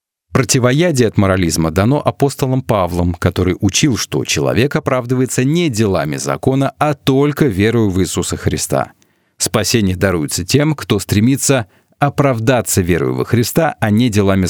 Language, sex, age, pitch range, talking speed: Russian, male, 40-59, 95-135 Hz, 130 wpm